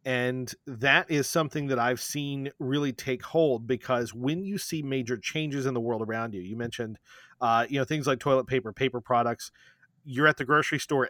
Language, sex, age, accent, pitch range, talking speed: English, male, 30-49, American, 120-155 Hz, 200 wpm